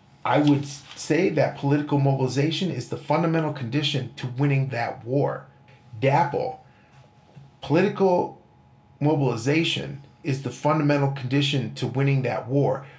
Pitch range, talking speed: 130-160 Hz, 115 wpm